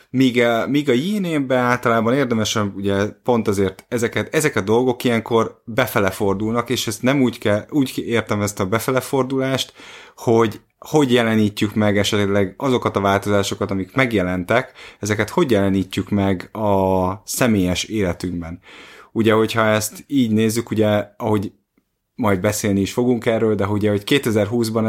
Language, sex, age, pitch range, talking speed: Hungarian, male, 30-49, 100-125 Hz, 140 wpm